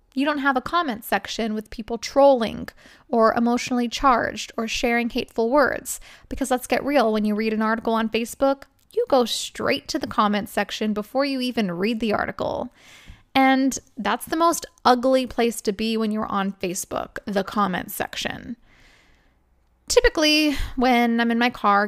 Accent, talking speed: American, 165 wpm